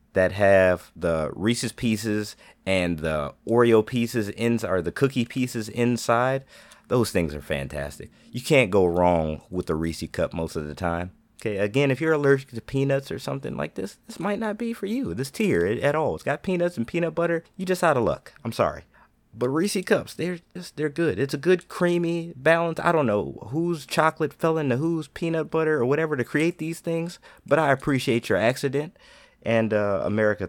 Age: 30-49